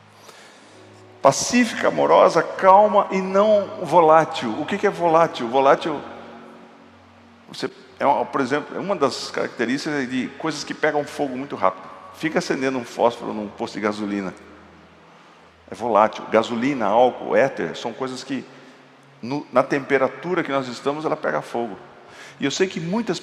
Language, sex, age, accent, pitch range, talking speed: Portuguese, male, 50-69, Brazilian, 125-175 Hz, 145 wpm